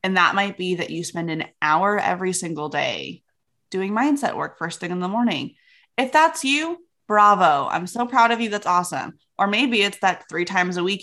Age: 20-39